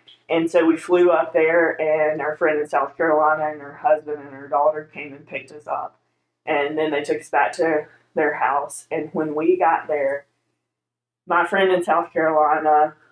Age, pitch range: 20-39, 150-170 Hz